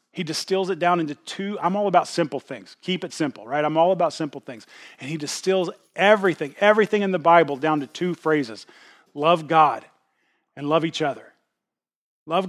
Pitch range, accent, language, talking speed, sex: 135-170 Hz, American, English, 185 wpm, male